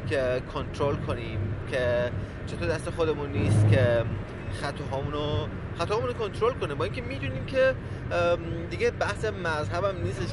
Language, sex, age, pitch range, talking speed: Persian, male, 30-49, 95-125 Hz, 135 wpm